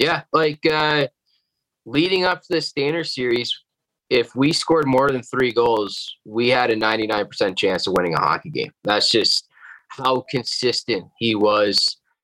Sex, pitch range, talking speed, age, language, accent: male, 105-135 Hz, 155 wpm, 20-39, English, American